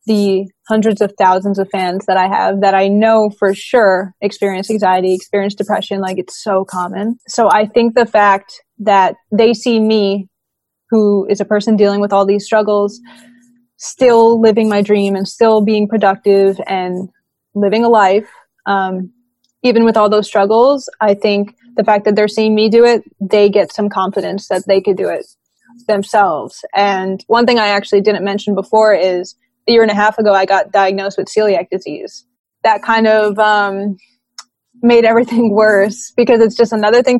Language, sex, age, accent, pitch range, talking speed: English, female, 20-39, American, 195-230 Hz, 180 wpm